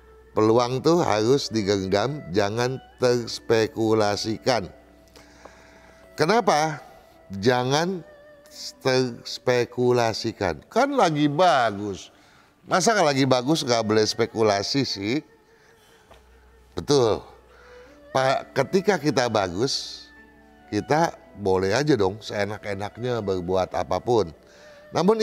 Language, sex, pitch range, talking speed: Indonesian, male, 105-165 Hz, 75 wpm